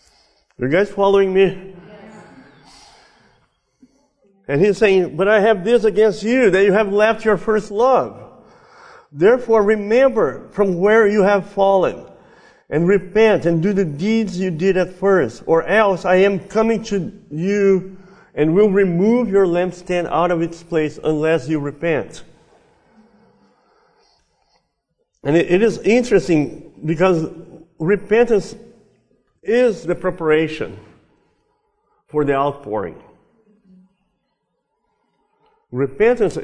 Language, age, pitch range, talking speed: English, 50-69, 160-215 Hz, 115 wpm